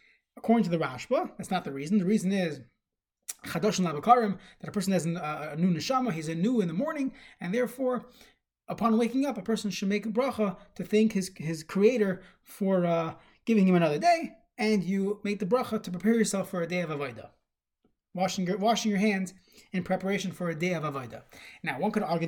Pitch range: 170-220 Hz